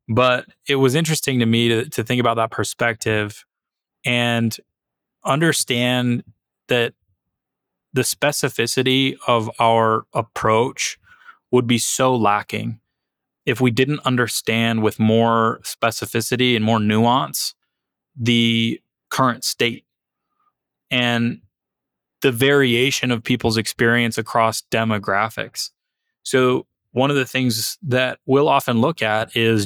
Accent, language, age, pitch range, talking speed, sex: American, English, 20-39, 110-125 Hz, 115 wpm, male